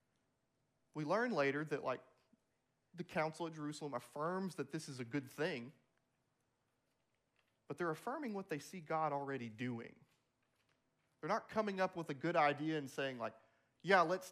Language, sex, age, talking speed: English, male, 30-49, 160 wpm